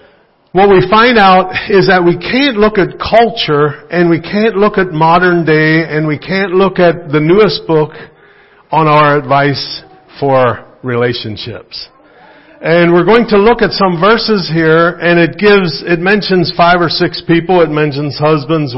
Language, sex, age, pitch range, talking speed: English, male, 50-69, 130-175 Hz, 165 wpm